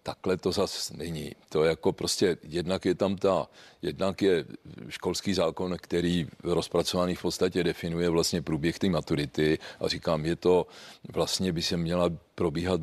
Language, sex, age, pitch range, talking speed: Czech, male, 40-59, 85-95 Hz, 160 wpm